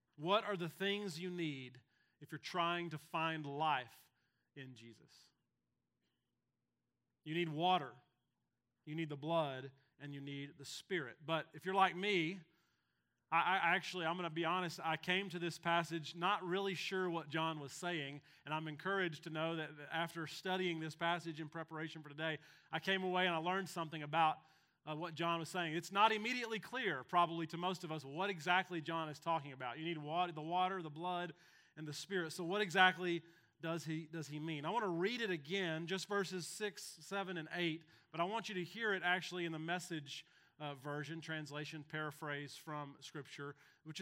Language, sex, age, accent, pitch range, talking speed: English, male, 30-49, American, 150-180 Hz, 190 wpm